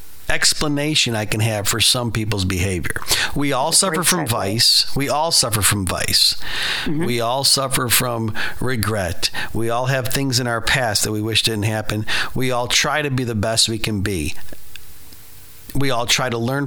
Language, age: English, 50-69